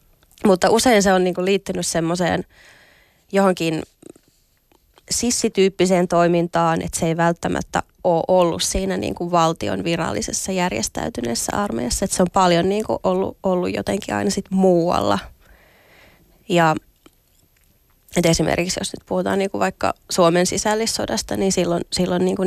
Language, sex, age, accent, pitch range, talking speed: Finnish, female, 20-39, native, 170-190 Hz, 125 wpm